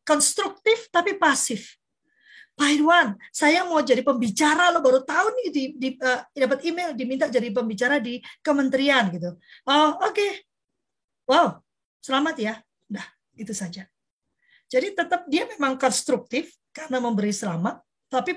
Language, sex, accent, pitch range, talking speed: Indonesian, female, native, 230-330 Hz, 125 wpm